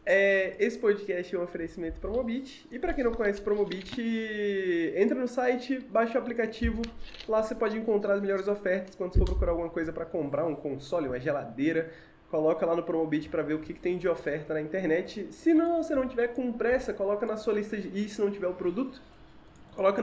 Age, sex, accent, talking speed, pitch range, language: 20-39, male, Brazilian, 220 wpm, 160-230 Hz, Portuguese